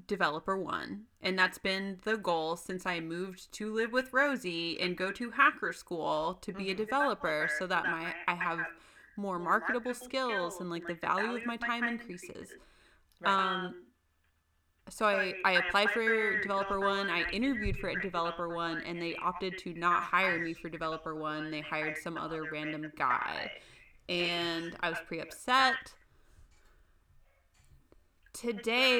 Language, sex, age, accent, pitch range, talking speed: English, female, 20-39, American, 165-210 Hz, 155 wpm